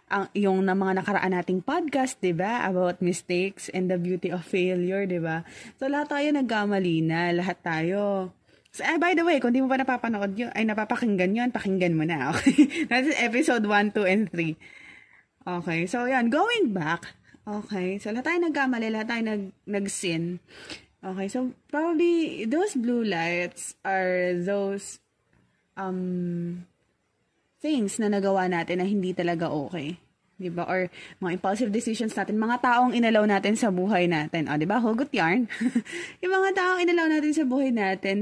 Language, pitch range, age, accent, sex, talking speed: Filipino, 185-255 Hz, 20-39, native, female, 165 wpm